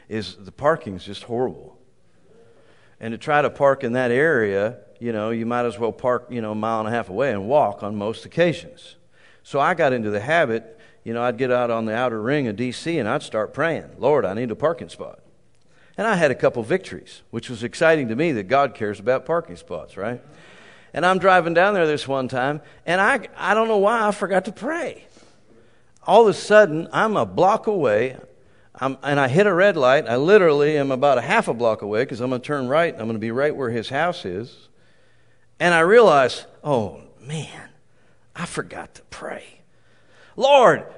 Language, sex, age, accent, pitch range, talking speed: English, male, 50-69, American, 120-170 Hz, 215 wpm